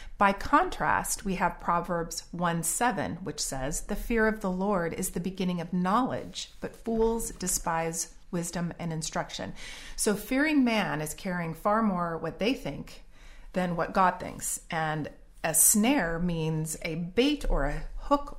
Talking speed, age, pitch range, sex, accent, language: 155 wpm, 40-59, 170-215 Hz, female, American, English